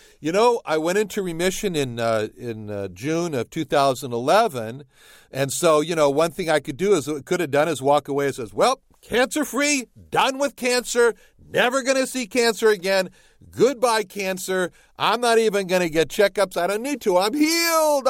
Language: English